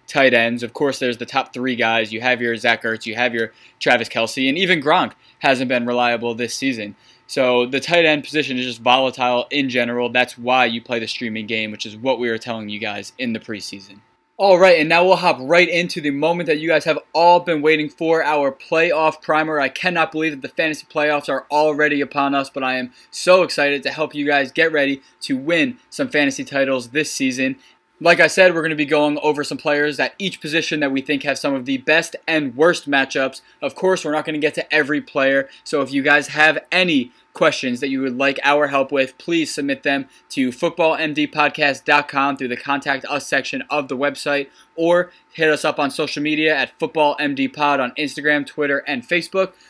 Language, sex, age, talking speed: English, male, 20-39, 220 wpm